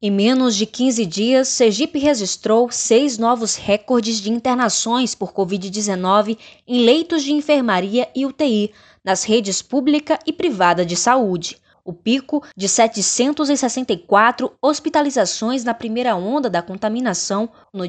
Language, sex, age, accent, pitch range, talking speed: Portuguese, female, 10-29, Brazilian, 200-260 Hz, 125 wpm